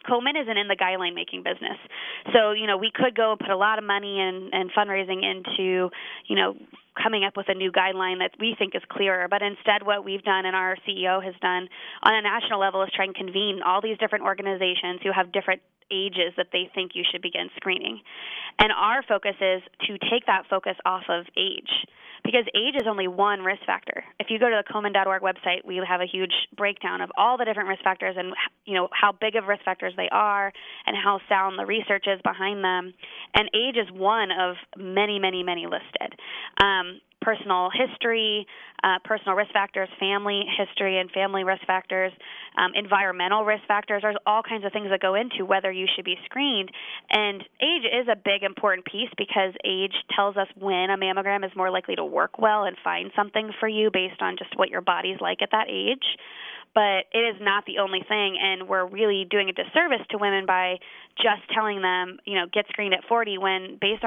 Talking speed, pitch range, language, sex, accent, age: 210 wpm, 185-210 Hz, English, female, American, 20-39